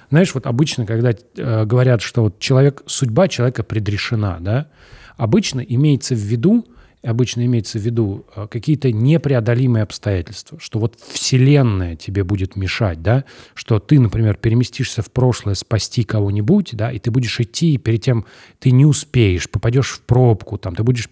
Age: 30-49